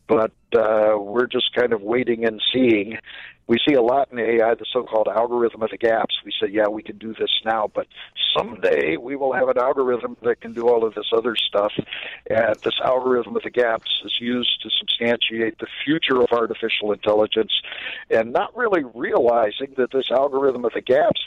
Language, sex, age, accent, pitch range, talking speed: English, male, 60-79, American, 110-140 Hz, 195 wpm